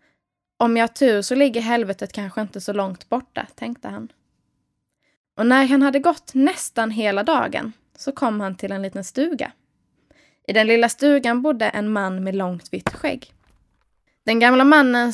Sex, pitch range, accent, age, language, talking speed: female, 205-275 Hz, native, 20-39, Swedish, 165 wpm